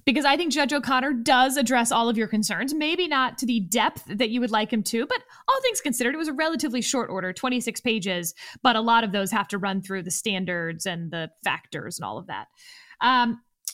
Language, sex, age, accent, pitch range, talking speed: English, female, 20-39, American, 205-260 Hz, 230 wpm